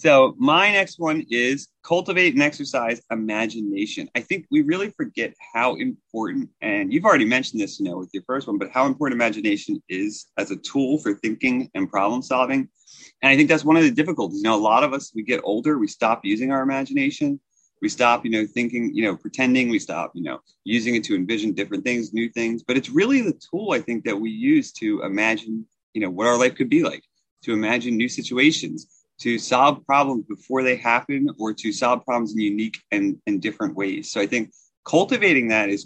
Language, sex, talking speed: English, male, 215 wpm